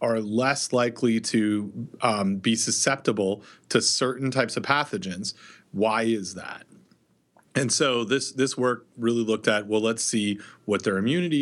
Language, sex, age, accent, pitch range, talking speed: English, male, 30-49, American, 110-130 Hz, 150 wpm